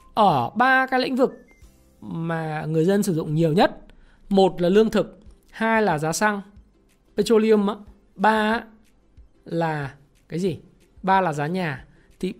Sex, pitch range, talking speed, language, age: male, 175-235 Hz, 150 wpm, Vietnamese, 20-39